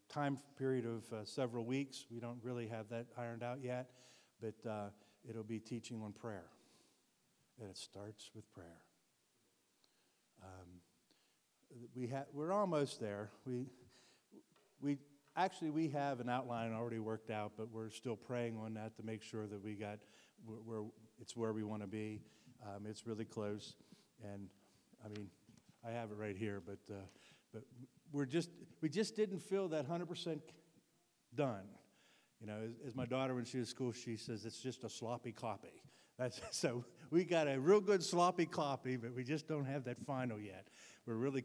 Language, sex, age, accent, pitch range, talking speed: English, male, 50-69, American, 110-135 Hz, 175 wpm